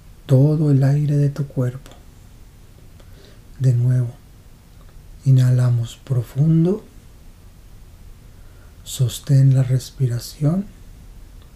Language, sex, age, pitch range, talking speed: Spanish, male, 60-79, 95-140 Hz, 65 wpm